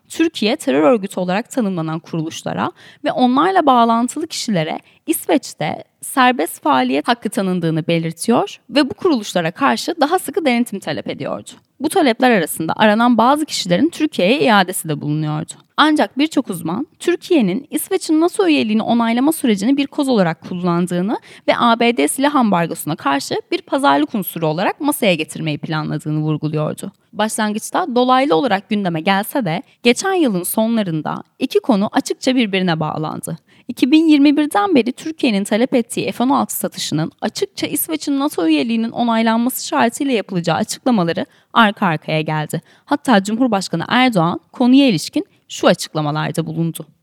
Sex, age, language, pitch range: female, 10-29, Turkish, 180-285 Hz